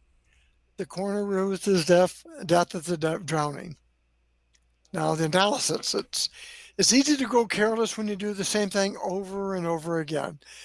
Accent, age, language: American, 60-79, English